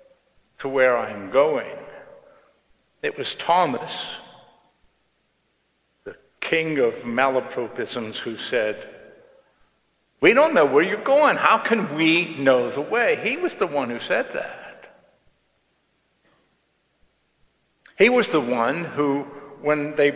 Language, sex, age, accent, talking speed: English, male, 50-69, American, 115 wpm